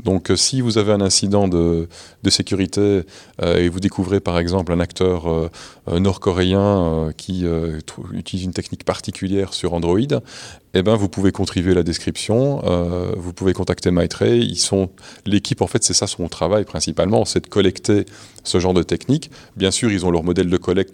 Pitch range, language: 90-105 Hz, French